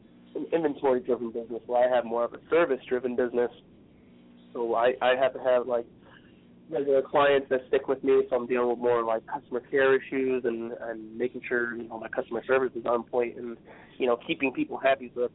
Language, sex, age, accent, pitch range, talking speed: English, male, 20-39, American, 115-130 Hz, 215 wpm